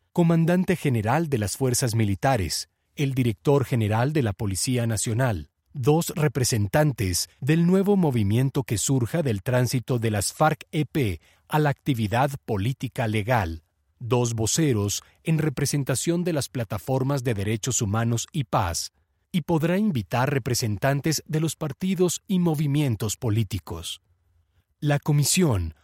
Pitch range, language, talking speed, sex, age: 105-150 Hz, Spanish, 130 wpm, male, 40-59